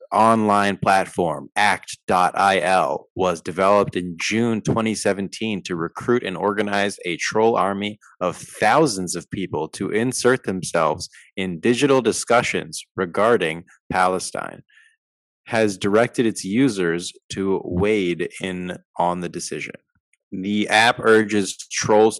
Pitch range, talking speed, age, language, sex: 90-110 Hz, 110 wpm, 20-39, English, male